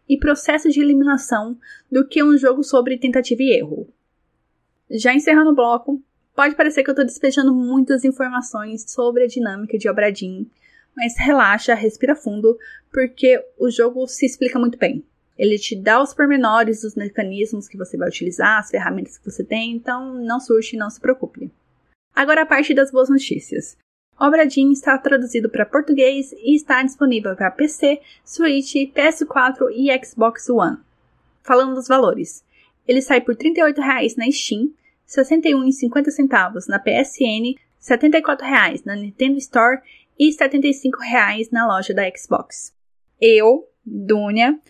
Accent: Brazilian